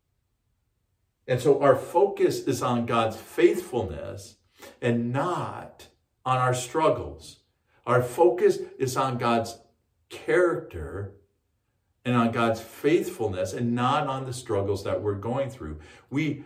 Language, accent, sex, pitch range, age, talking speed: English, American, male, 105-130 Hz, 50-69, 120 wpm